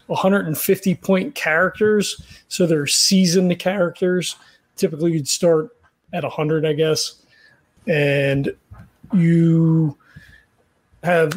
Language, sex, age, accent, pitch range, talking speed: English, male, 30-49, American, 160-195 Hz, 95 wpm